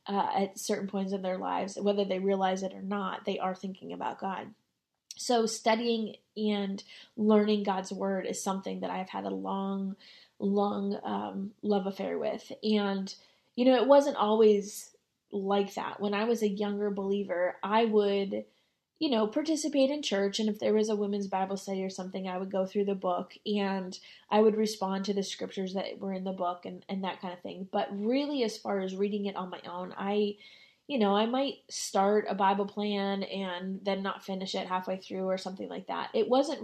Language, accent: English, American